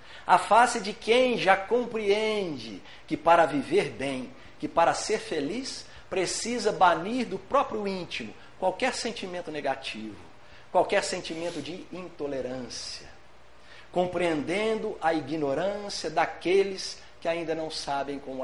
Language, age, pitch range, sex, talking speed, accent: Portuguese, 60-79, 150-205 Hz, male, 115 wpm, Brazilian